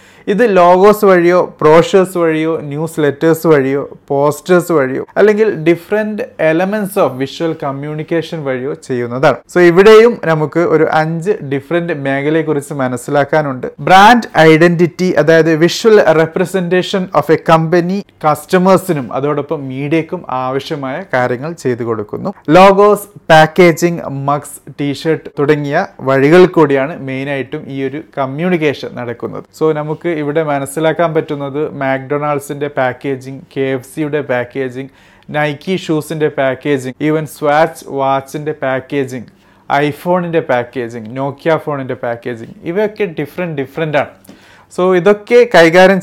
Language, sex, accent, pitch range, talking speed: Malayalam, male, native, 140-175 Hz, 110 wpm